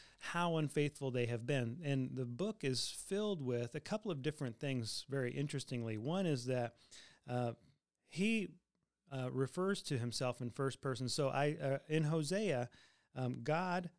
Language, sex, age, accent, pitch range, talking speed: English, male, 40-59, American, 125-155 Hz, 160 wpm